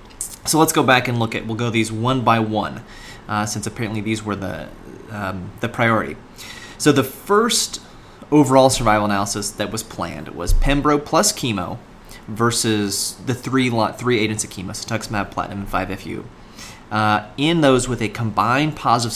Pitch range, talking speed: 105-135 Hz, 170 wpm